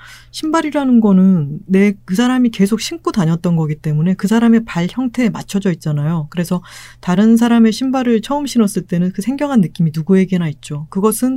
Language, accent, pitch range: Korean, native, 150-225 Hz